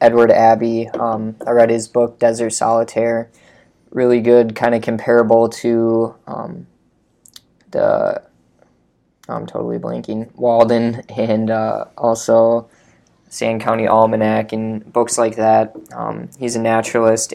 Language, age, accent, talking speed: English, 20-39, American, 120 wpm